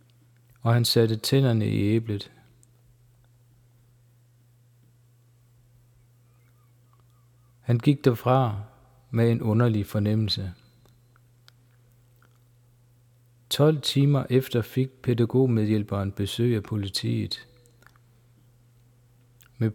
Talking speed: 65 wpm